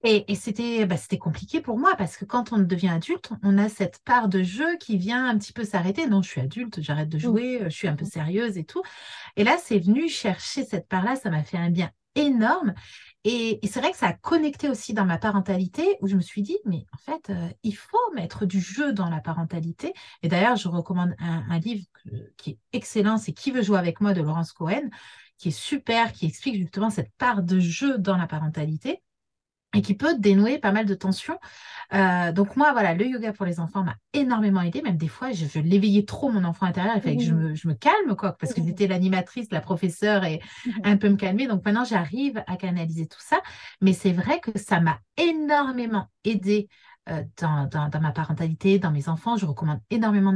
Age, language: 30-49, French